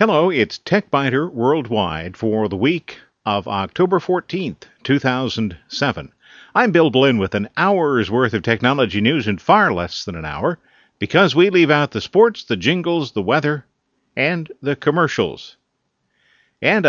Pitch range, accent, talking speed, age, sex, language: 110-165 Hz, American, 145 wpm, 50-69, male, English